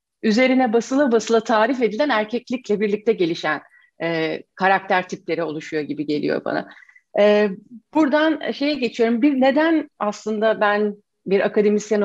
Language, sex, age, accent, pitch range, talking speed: Turkish, female, 40-59, native, 190-250 Hz, 125 wpm